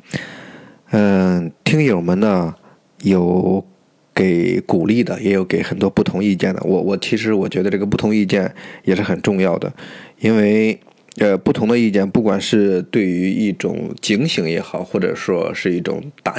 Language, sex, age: Chinese, male, 20-39